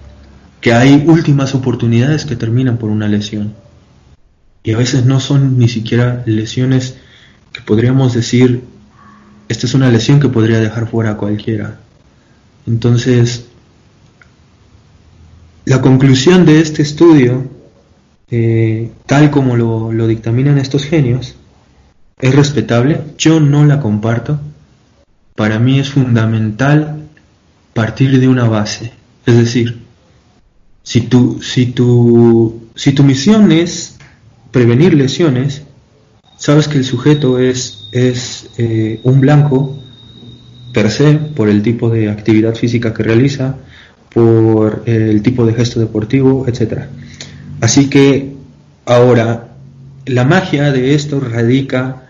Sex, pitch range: male, 115-135 Hz